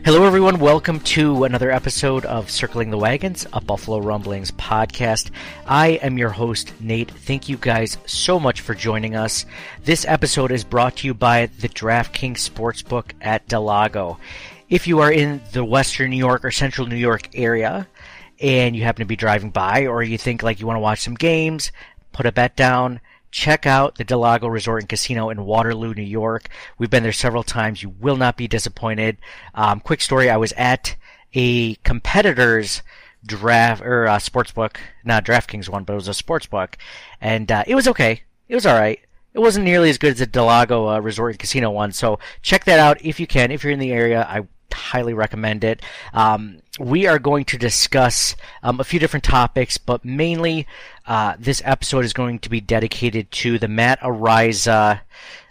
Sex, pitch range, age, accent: male, 110-130 Hz, 40-59, American